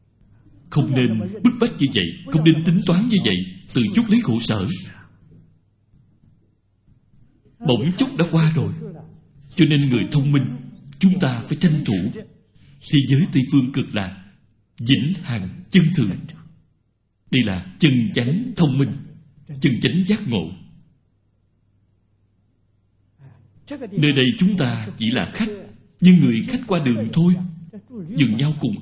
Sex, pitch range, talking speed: male, 105-165 Hz, 140 wpm